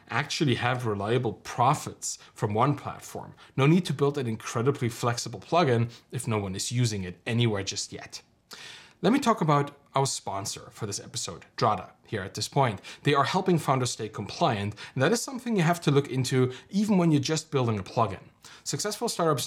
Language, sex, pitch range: English, male, 115-155 Hz